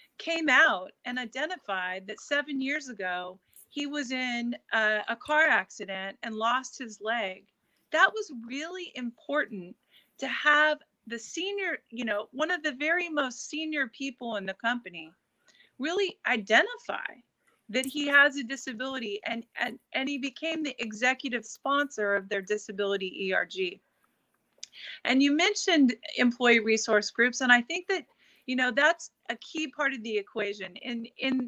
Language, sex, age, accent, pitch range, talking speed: English, female, 30-49, American, 210-290 Hz, 155 wpm